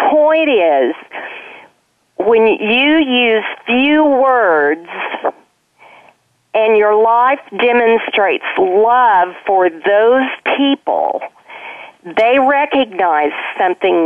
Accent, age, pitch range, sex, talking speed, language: American, 40-59, 195-310 Hz, female, 75 wpm, English